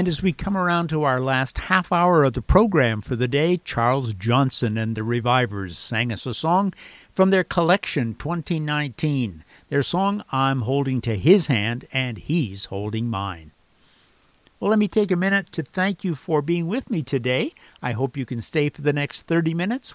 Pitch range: 120-160 Hz